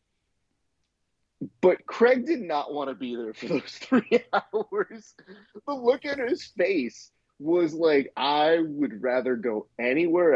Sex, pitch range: male, 110-165 Hz